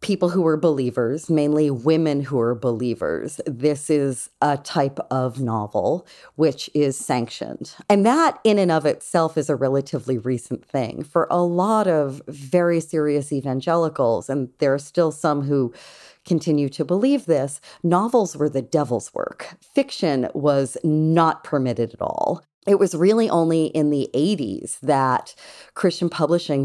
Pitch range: 135-170 Hz